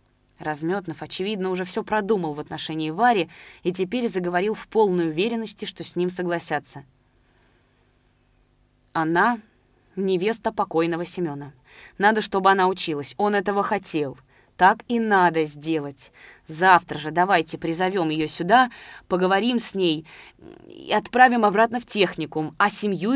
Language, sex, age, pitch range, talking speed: Russian, female, 20-39, 155-200 Hz, 125 wpm